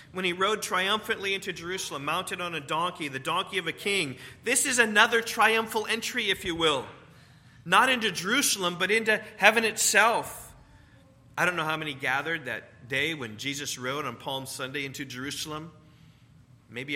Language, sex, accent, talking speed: English, male, American, 165 wpm